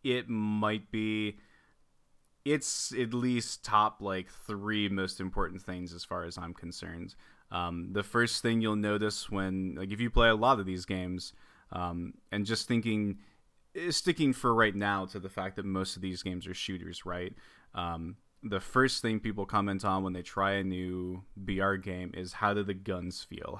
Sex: male